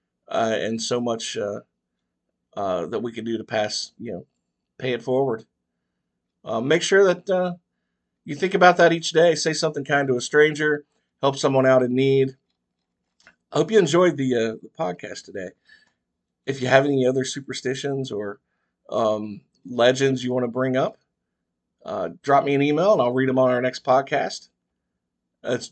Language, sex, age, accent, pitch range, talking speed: English, male, 50-69, American, 115-150 Hz, 180 wpm